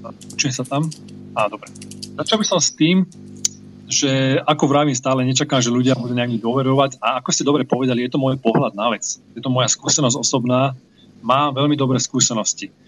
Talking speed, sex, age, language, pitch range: 185 wpm, male, 30-49, Slovak, 125-150 Hz